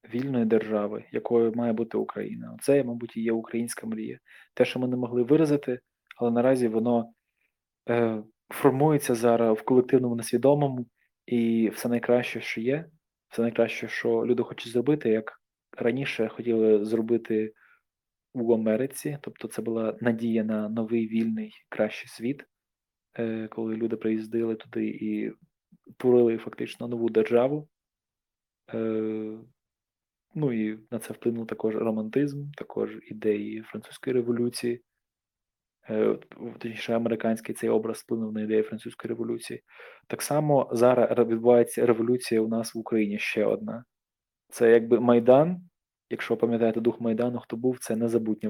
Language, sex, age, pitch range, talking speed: Ukrainian, male, 20-39, 110-125 Hz, 125 wpm